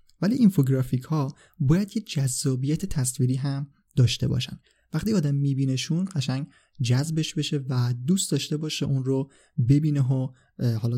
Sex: male